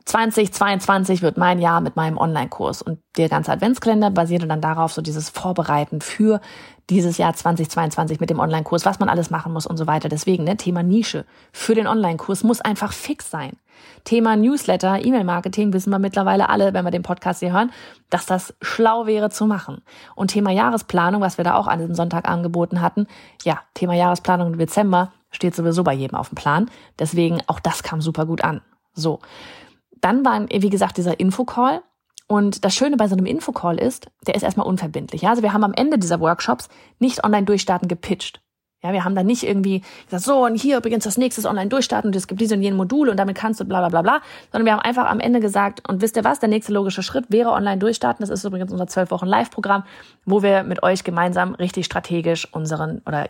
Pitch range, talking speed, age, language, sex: 170-215 Hz, 210 wpm, 30-49, German, female